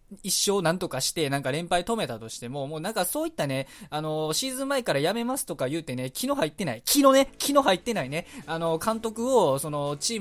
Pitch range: 145-230 Hz